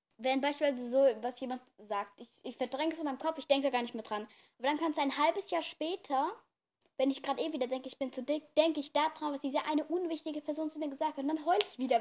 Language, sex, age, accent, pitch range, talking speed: German, female, 10-29, German, 250-305 Hz, 275 wpm